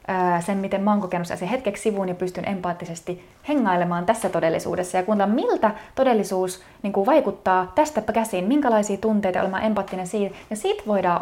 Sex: female